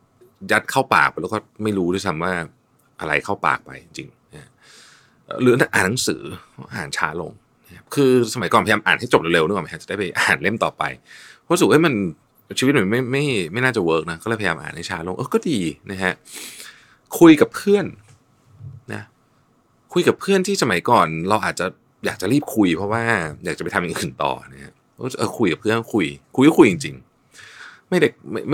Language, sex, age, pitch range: Thai, male, 30-49, 90-130 Hz